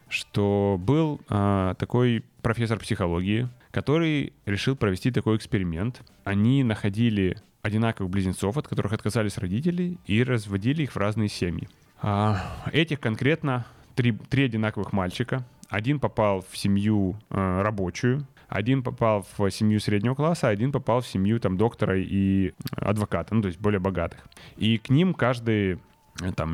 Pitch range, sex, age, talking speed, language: 100-120 Hz, male, 20-39, 140 wpm, Ukrainian